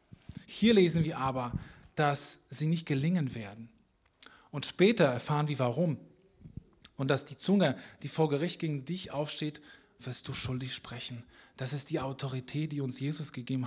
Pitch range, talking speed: 130-165 Hz, 160 wpm